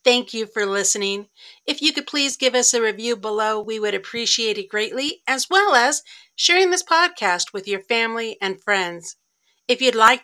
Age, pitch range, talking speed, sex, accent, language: 50-69, 200-280 Hz, 190 wpm, female, American, English